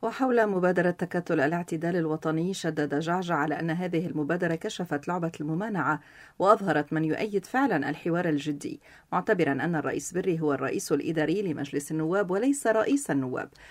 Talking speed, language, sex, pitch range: 140 wpm, Arabic, female, 150-210 Hz